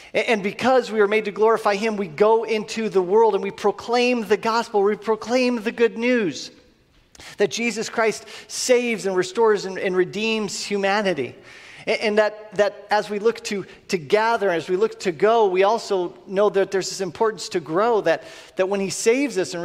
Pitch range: 150-205 Hz